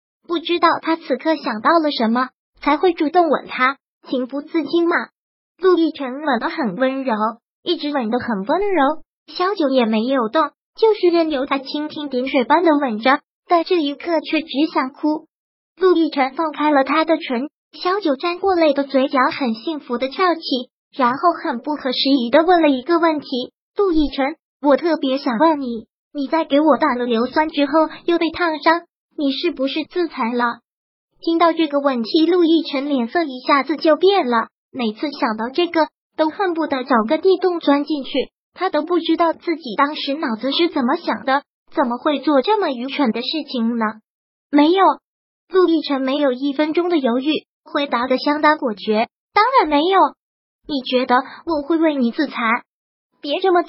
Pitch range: 265-330 Hz